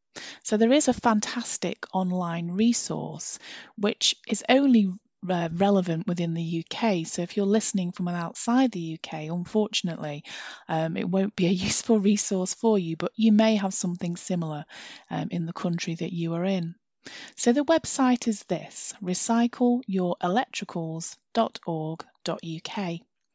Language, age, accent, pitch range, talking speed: English, 30-49, British, 170-225 Hz, 135 wpm